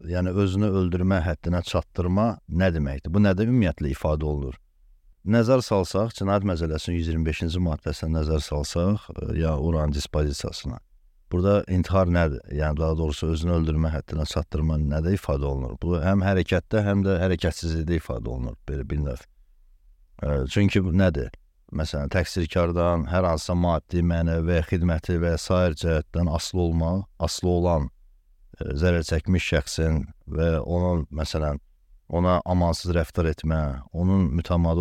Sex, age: male, 60-79